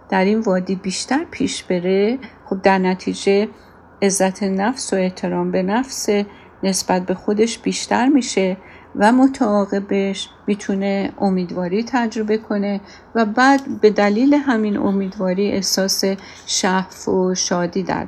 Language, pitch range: Persian, 190-255 Hz